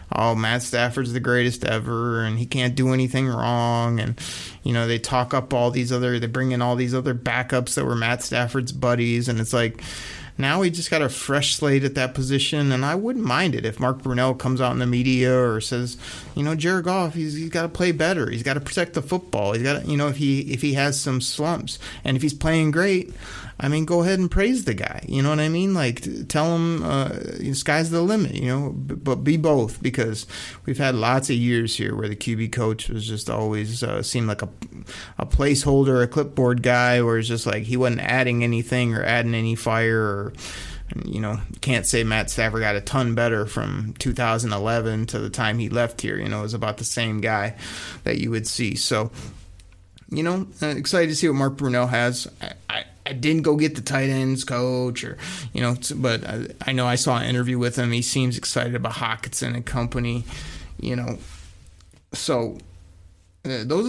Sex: male